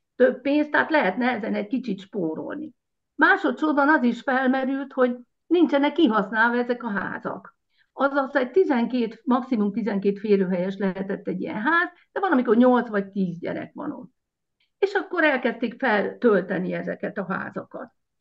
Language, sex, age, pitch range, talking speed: Hungarian, female, 50-69, 210-280 Hz, 140 wpm